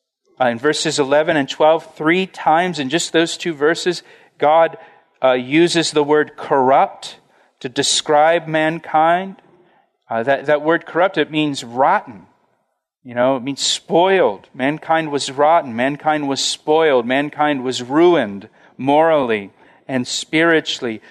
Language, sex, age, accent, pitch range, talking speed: English, male, 40-59, American, 135-170 Hz, 135 wpm